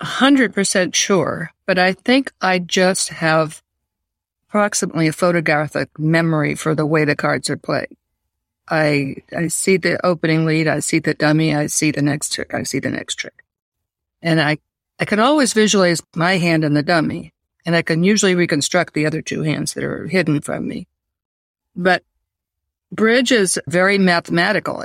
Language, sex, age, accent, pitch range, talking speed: English, female, 50-69, American, 150-195 Hz, 165 wpm